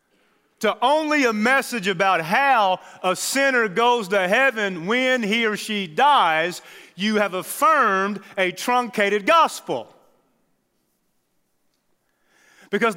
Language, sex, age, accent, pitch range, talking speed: English, male, 40-59, American, 200-275 Hz, 105 wpm